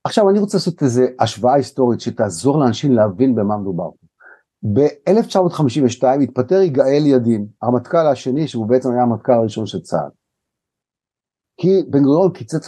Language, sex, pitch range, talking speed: Hebrew, male, 125-170 Hz, 135 wpm